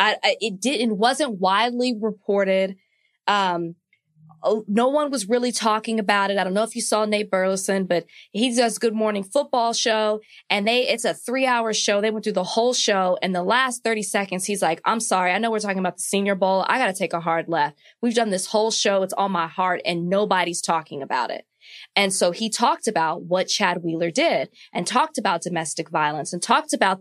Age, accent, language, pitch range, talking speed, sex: 20-39, American, English, 180-225 Hz, 215 wpm, female